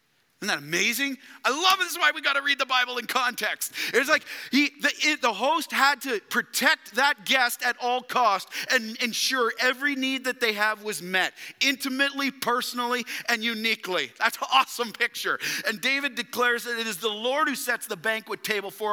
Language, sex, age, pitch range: English, male, 40-59, 220-275 Hz